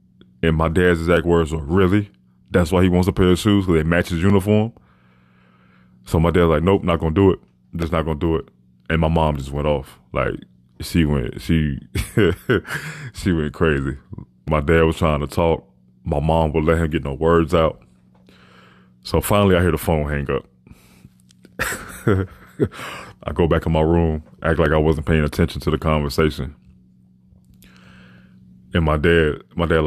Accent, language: American, English